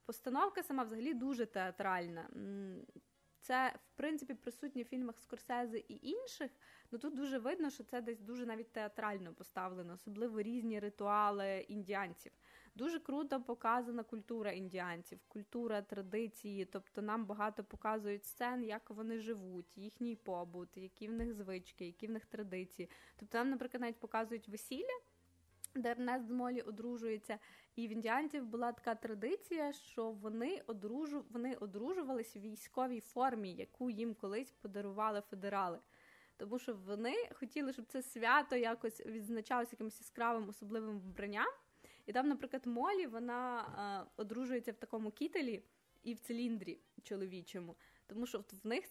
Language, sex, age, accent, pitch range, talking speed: Ukrainian, female, 20-39, native, 205-245 Hz, 135 wpm